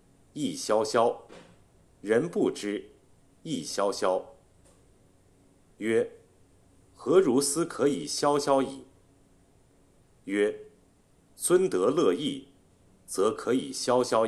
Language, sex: Chinese, male